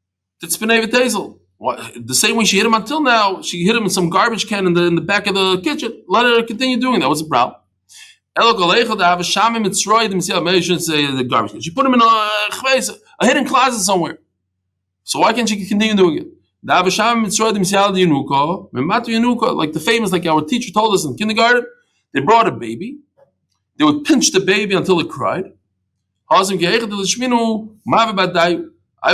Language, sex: English, male